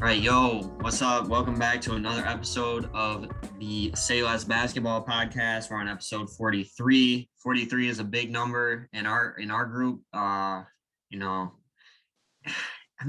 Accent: American